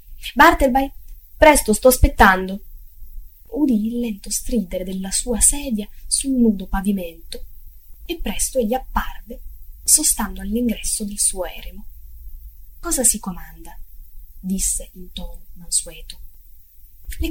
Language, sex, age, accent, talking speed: Italian, female, 20-39, native, 110 wpm